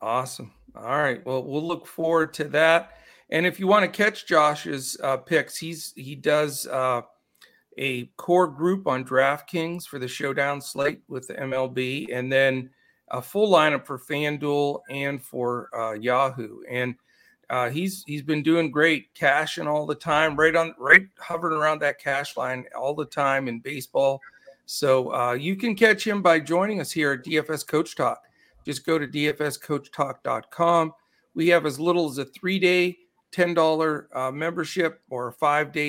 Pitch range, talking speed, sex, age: 135-165 Hz, 165 wpm, male, 50-69